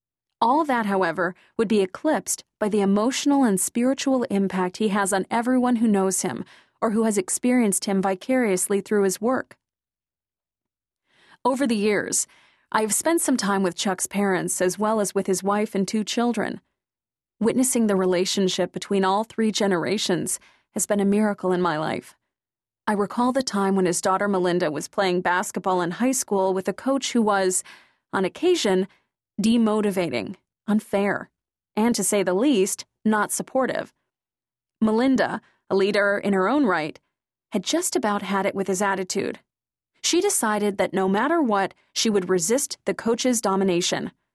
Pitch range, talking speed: 190-230 Hz, 160 wpm